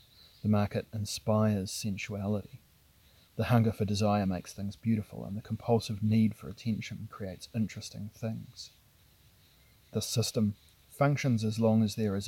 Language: English